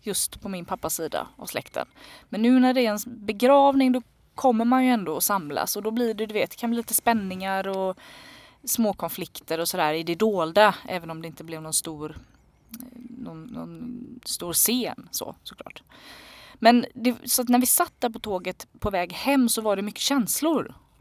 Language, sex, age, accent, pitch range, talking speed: Swedish, female, 20-39, native, 170-245 Hz, 205 wpm